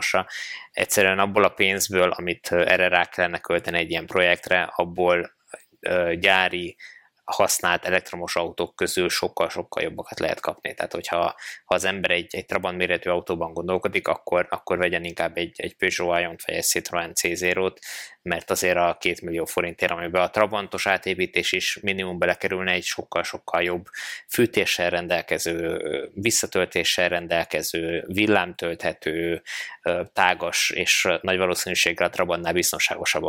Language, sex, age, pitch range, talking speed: Hungarian, male, 20-39, 85-95 Hz, 130 wpm